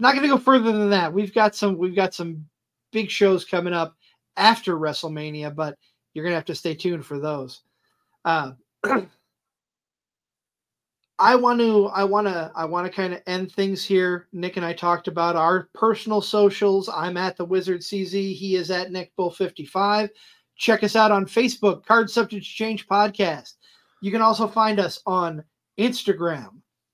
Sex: male